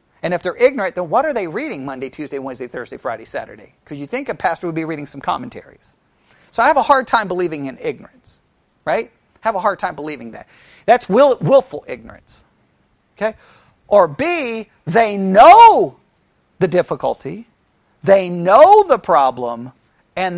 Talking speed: 170 wpm